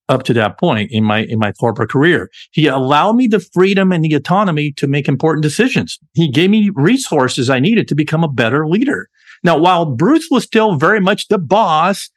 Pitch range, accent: 135-185 Hz, American